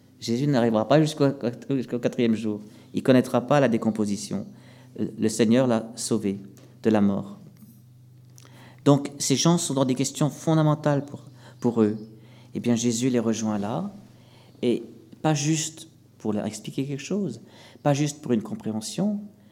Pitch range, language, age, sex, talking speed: 110-135 Hz, French, 50-69, male, 155 wpm